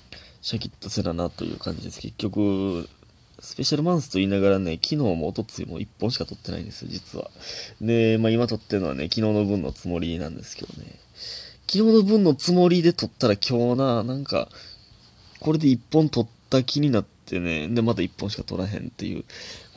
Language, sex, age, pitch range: Japanese, male, 20-39, 95-140 Hz